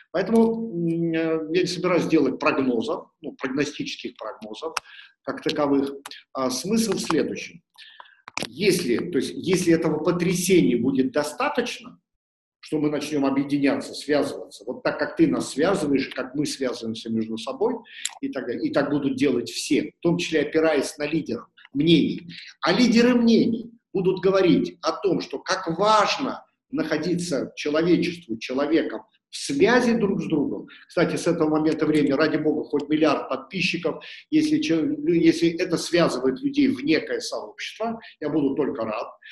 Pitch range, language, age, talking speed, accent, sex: 155-215 Hz, Russian, 50-69, 140 wpm, native, male